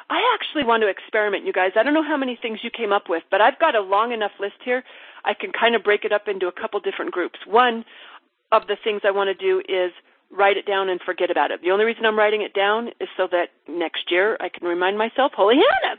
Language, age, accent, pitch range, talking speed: English, 40-59, American, 205-275 Hz, 265 wpm